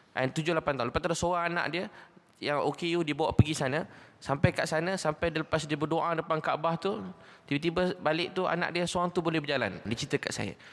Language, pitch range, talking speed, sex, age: Malay, 135-170 Hz, 205 wpm, male, 20-39